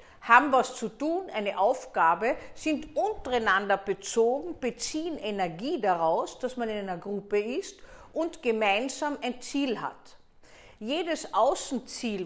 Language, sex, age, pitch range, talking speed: German, female, 50-69, 190-260 Hz, 120 wpm